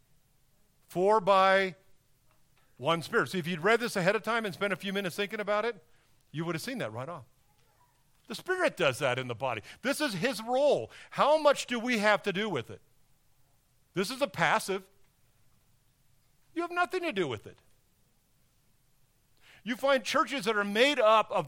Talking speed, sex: 185 wpm, male